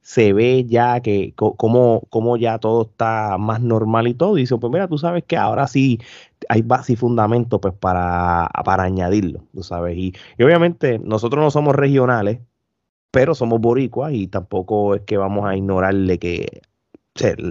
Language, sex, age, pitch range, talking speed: Spanish, male, 30-49, 100-130 Hz, 180 wpm